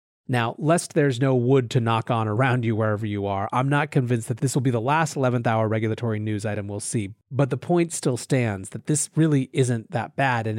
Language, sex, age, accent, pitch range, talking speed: English, male, 30-49, American, 115-160 Hz, 230 wpm